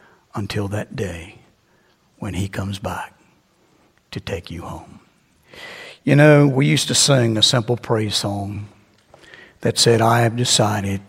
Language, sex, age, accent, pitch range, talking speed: English, male, 60-79, American, 100-140 Hz, 140 wpm